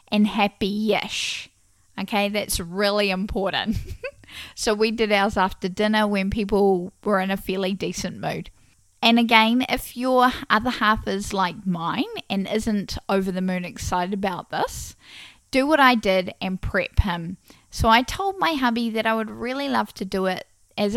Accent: Australian